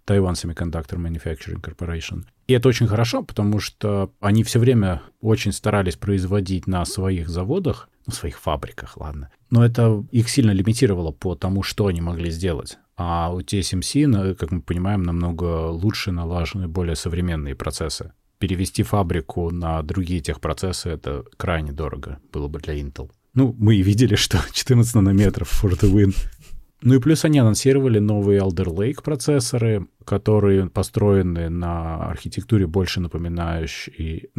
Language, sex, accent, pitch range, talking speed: Russian, male, native, 85-105 Hz, 145 wpm